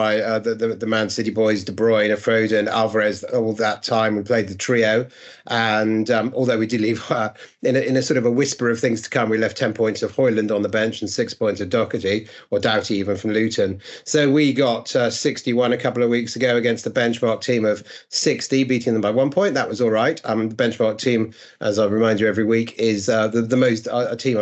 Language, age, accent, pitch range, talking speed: English, 40-59, British, 105-125 Hz, 250 wpm